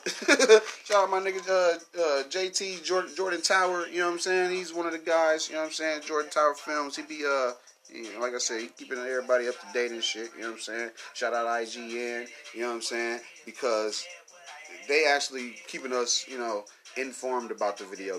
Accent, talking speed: American, 225 wpm